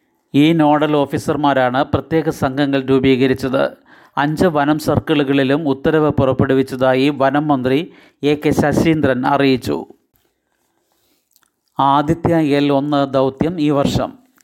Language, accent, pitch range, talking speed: Malayalam, native, 135-150 Hz, 95 wpm